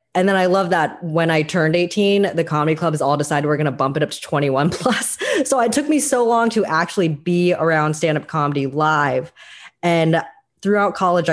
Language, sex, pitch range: English, female, 150-195 Hz